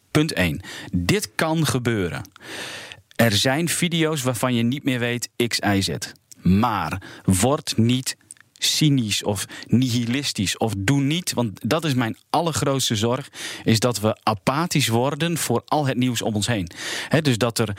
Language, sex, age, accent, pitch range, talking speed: Dutch, male, 40-59, Dutch, 110-145 Hz, 150 wpm